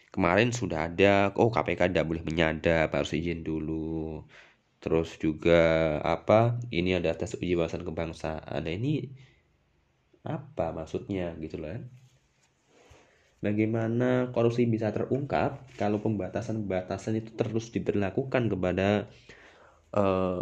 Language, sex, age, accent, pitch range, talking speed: Indonesian, male, 20-39, native, 85-110 Hz, 110 wpm